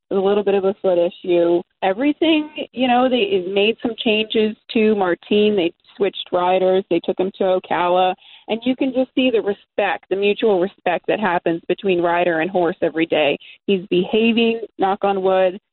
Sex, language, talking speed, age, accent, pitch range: female, English, 180 wpm, 30-49, American, 175-210 Hz